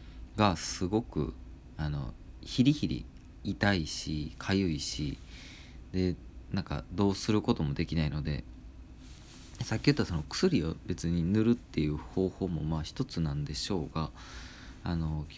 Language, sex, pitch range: Japanese, male, 75-100 Hz